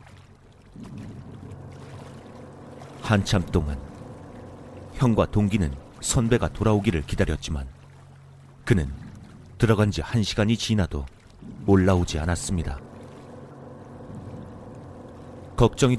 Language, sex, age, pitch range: Korean, male, 40-59, 90-110 Hz